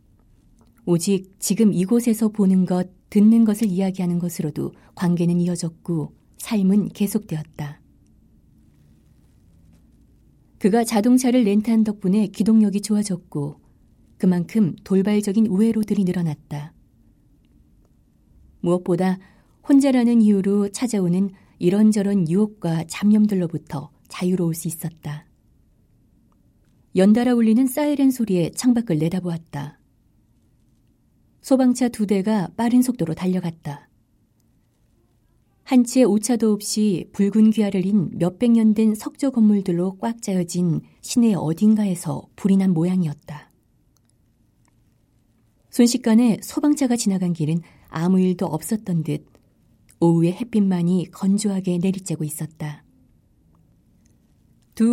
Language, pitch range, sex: Korean, 165-220 Hz, female